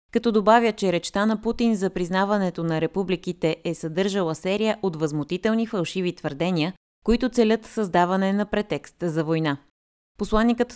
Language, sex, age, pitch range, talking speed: Bulgarian, female, 20-39, 170-215 Hz, 140 wpm